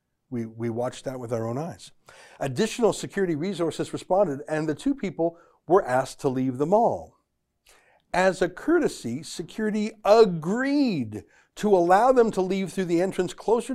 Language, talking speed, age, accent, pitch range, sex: English, 155 wpm, 60-79, American, 130-190 Hz, male